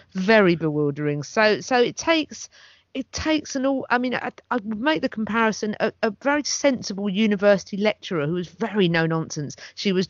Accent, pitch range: British, 150-185 Hz